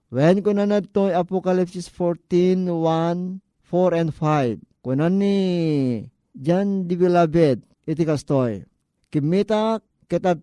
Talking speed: 105 wpm